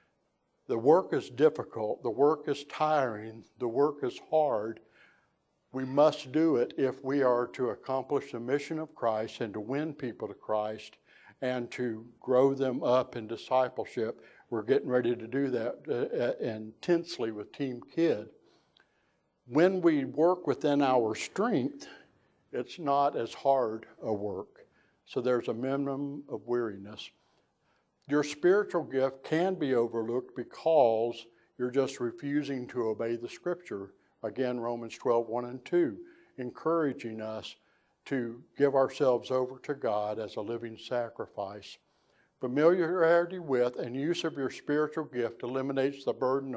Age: 60-79